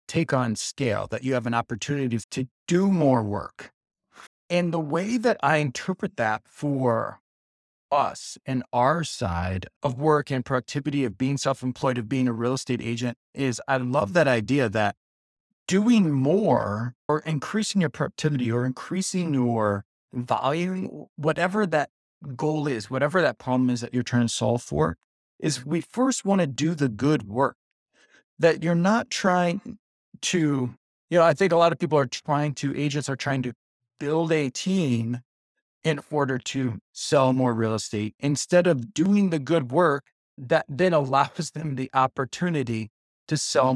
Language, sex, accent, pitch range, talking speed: English, male, American, 125-170 Hz, 165 wpm